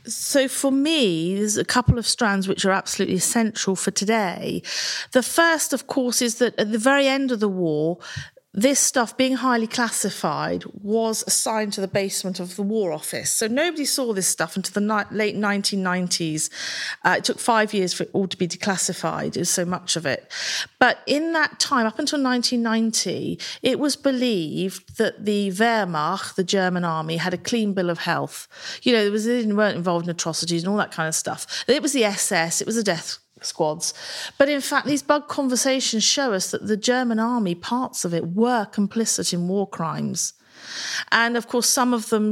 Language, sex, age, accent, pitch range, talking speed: English, female, 40-59, British, 190-250 Hz, 200 wpm